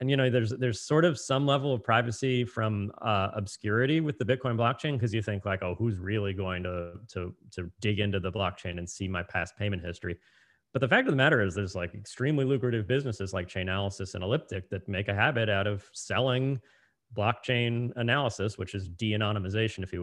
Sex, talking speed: male, 205 wpm